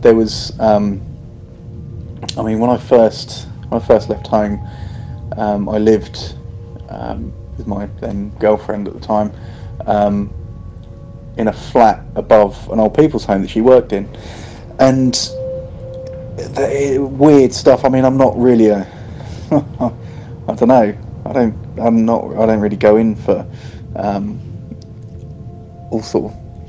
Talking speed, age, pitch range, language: 140 wpm, 20-39, 105-120 Hz, English